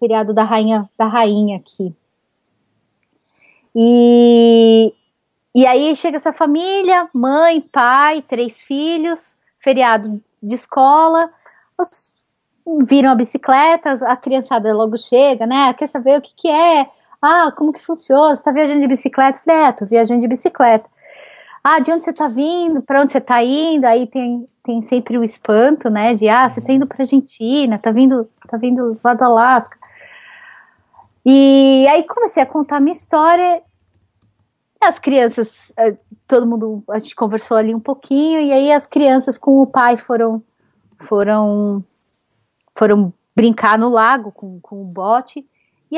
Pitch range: 230-295 Hz